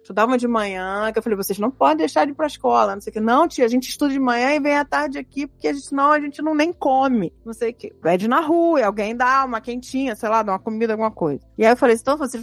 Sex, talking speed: female, 300 wpm